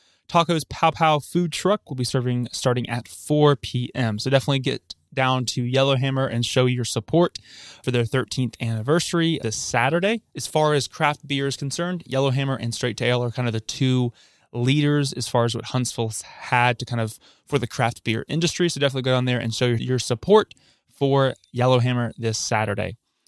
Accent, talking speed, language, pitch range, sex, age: American, 185 wpm, English, 120-150 Hz, male, 20-39